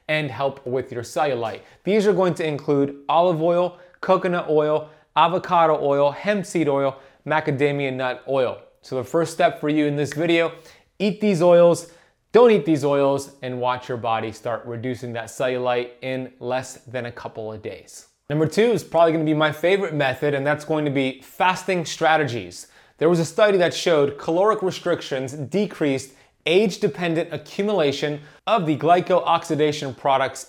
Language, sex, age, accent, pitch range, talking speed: English, male, 30-49, American, 130-170 Hz, 165 wpm